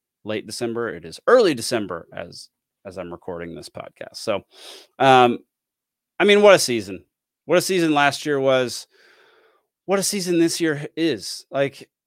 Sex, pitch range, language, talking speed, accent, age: male, 115-165 Hz, English, 160 wpm, American, 30-49